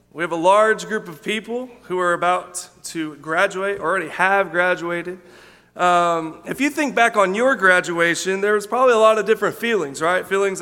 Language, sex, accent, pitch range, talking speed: English, male, American, 175-205 Hz, 185 wpm